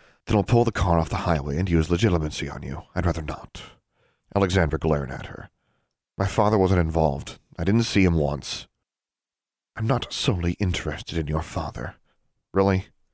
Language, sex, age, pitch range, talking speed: English, male, 40-59, 80-100 Hz, 170 wpm